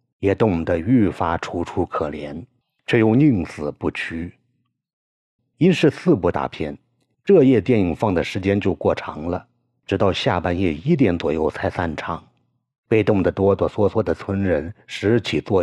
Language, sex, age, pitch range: Chinese, male, 50-69, 85-115 Hz